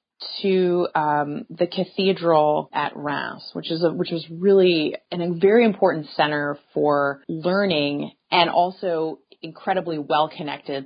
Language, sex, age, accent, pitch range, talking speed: English, female, 30-49, American, 155-210 Hz, 125 wpm